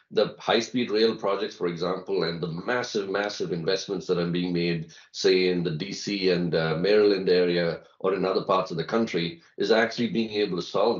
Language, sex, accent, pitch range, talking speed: English, male, Indian, 90-125 Hz, 195 wpm